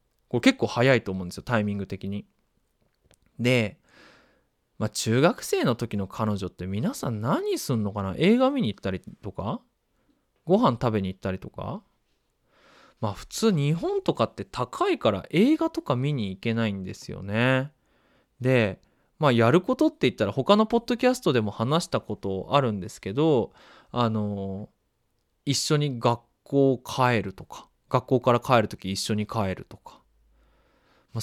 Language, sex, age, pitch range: Japanese, male, 20-39, 105-160 Hz